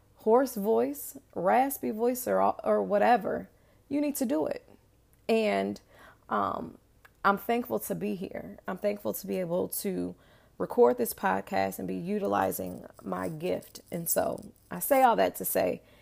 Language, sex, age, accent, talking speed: English, female, 30-49, American, 155 wpm